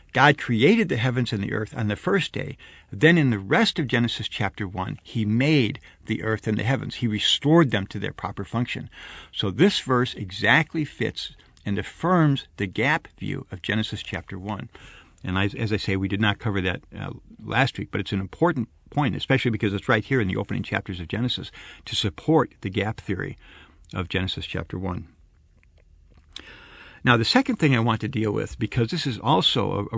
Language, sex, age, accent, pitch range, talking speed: English, male, 60-79, American, 95-125 Hz, 200 wpm